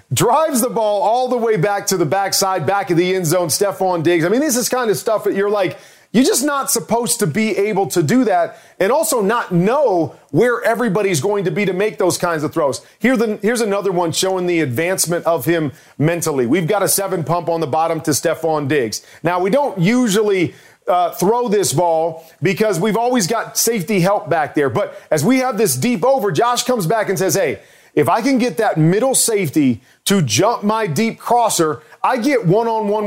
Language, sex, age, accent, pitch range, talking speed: English, male, 40-59, American, 170-220 Hz, 210 wpm